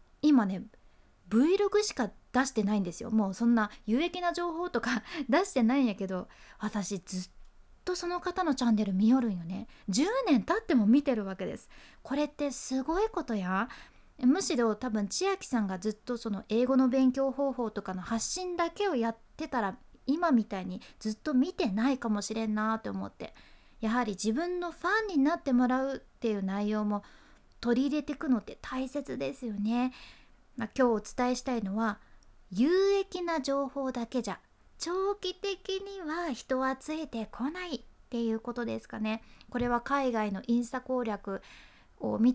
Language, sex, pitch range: Japanese, female, 215-285 Hz